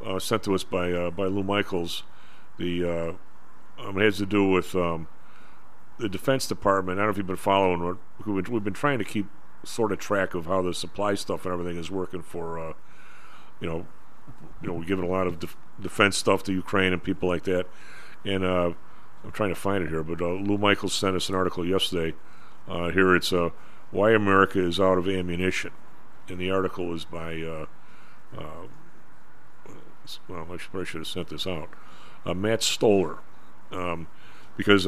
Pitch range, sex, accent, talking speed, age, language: 85-100 Hz, male, American, 210 wpm, 50-69, English